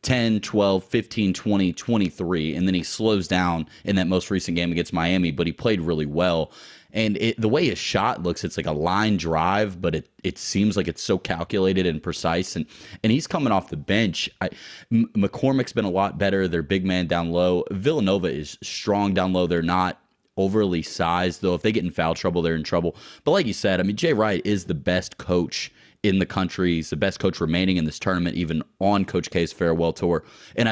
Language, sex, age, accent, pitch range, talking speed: English, male, 30-49, American, 85-100 Hz, 215 wpm